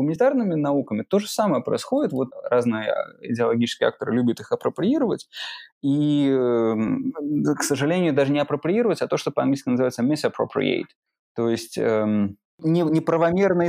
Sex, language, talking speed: male, Russian, 125 wpm